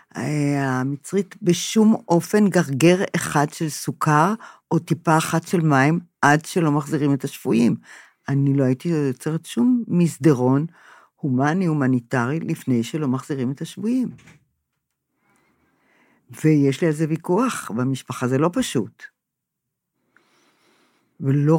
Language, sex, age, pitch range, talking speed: Hebrew, female, 50-69, 140-210 Hz, 110 wpm